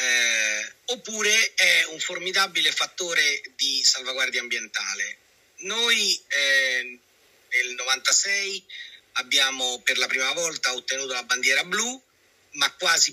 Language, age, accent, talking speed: Italian, 30-49, native, 110 wpm